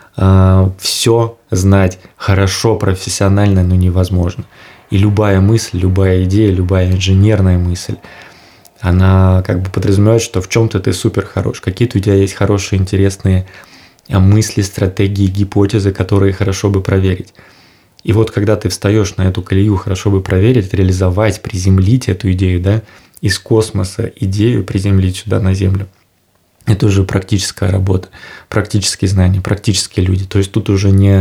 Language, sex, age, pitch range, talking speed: Russian, male, 20-39, 95-105 Hz, 140 wpm